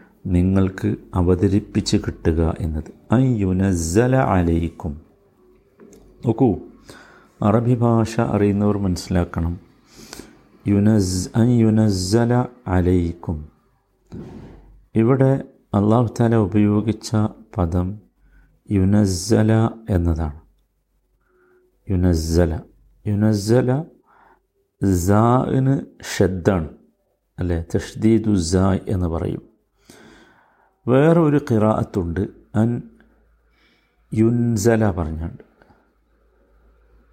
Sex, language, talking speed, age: male, Malayalam, 55 wpm, 50-69